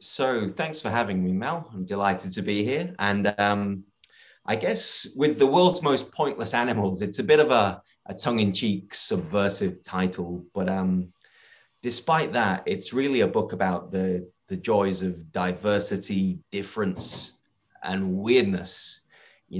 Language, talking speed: English, 145 wpm